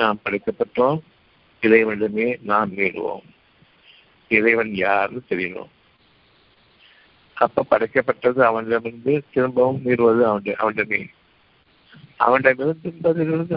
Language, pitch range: Tamil, 110-150 Hz